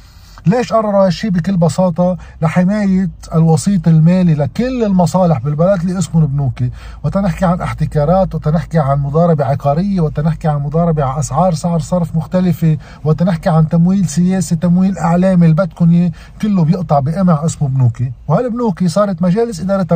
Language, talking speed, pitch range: Arabic, 130 wpm, 145-180 Hz